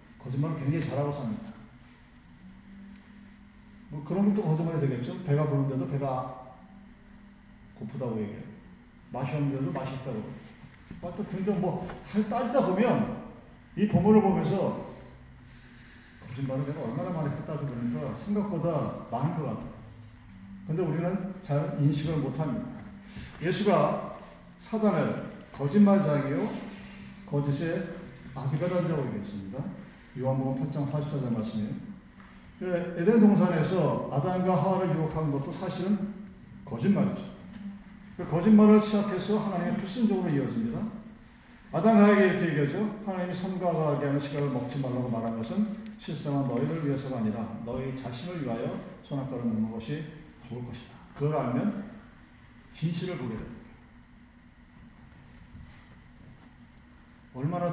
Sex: male